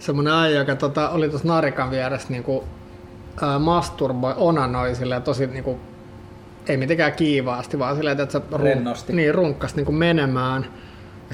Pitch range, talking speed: 125-155 Hz, 125 wpm